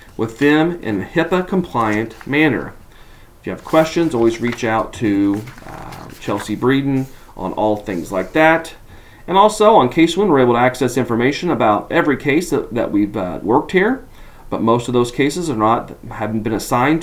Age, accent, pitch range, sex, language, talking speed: 40-59, American, 110-145 Hz, male, English, 180 wpm